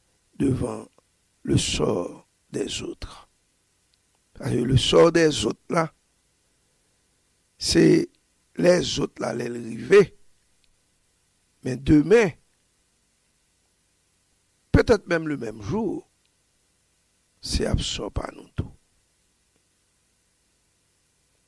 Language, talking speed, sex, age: English, 85 wpm, male, 60-79